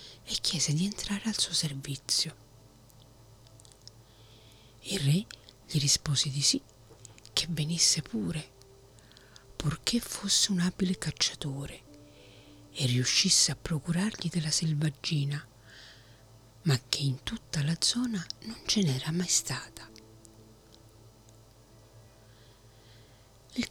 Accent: native